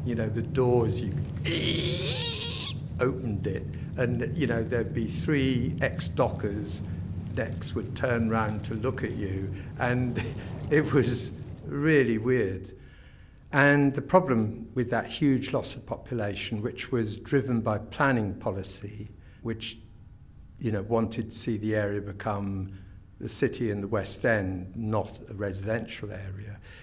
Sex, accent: male, British